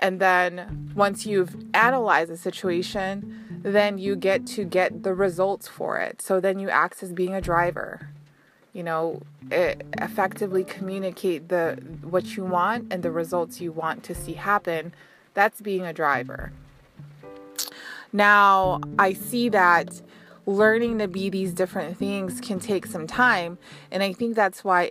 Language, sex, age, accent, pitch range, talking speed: English, female, 20-39, American, 165-205 Hz, 150 wpm